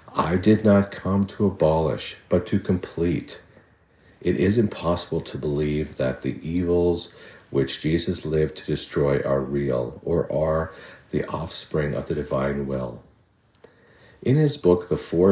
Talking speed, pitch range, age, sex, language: 145 wpm, 80-100 Hz, 50-69, male, English